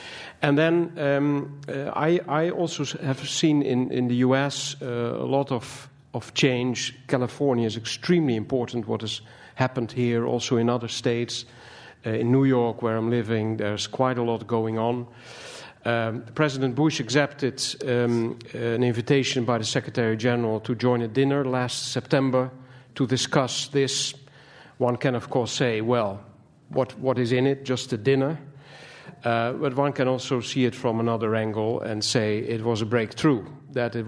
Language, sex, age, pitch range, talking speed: English, male, 50-69, 120-140 Hz, 170 wpm